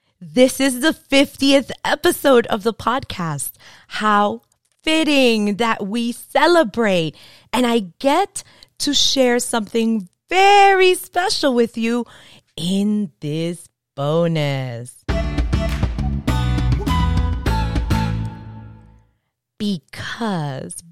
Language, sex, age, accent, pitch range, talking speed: English, female, 20-39, American, 160-240 Hz, 75 wpm